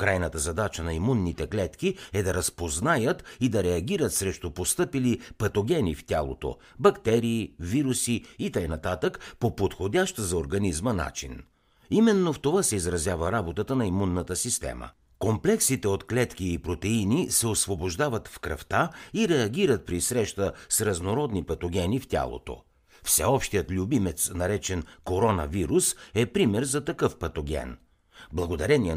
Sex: male